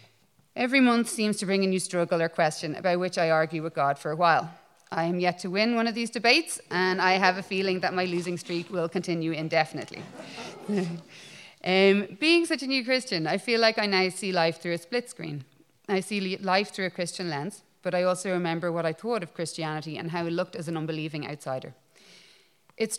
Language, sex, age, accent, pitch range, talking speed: English, female, 30-49, Irish, 160-190 Hz, 215 wpm